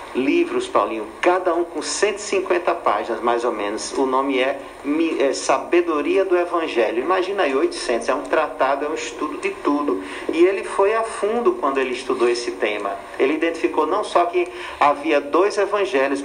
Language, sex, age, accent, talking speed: Portuguese, male, 50-69, Brazilian, 170 wpm